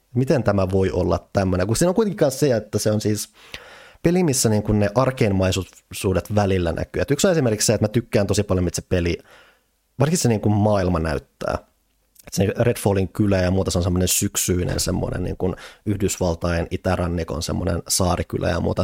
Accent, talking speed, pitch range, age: native, 190 wpm, 90-105 Hz, 30-49